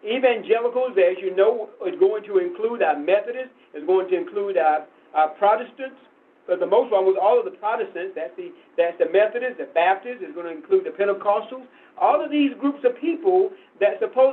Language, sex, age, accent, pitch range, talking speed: English, male, 50-69, American, 215-320 Hz, 195 wpm